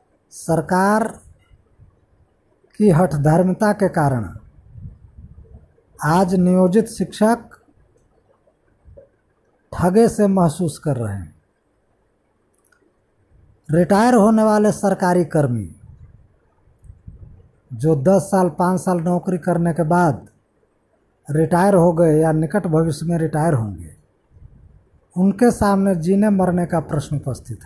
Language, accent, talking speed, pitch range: Hindi, native, 95 wpm, 120-195 Hz